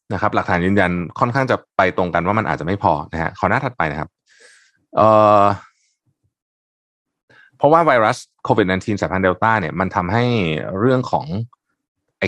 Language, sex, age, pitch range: Thai, male, 20-39, 90-120 Hz